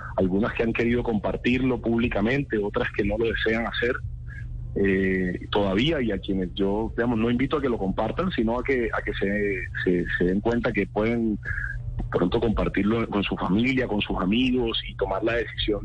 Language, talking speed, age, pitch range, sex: Spanish, 185 wpm, 30-49, 95-120 Hz, male